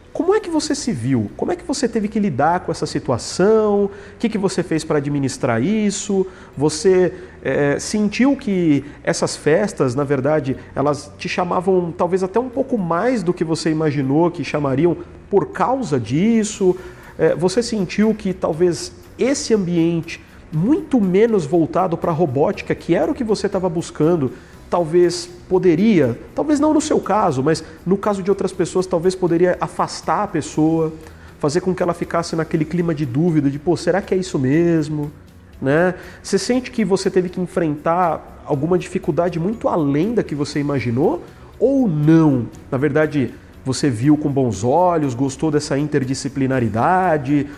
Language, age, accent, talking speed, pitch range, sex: Portuguese, 40-59, Brazilian, 160 wpm, 145-195 Hz, male